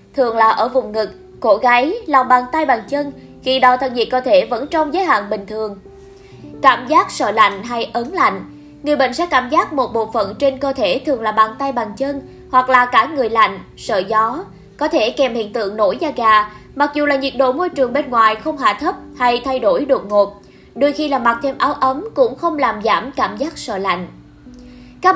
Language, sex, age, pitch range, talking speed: Vietnamese, female, 20-39, 230-300 Hz, 230 wpm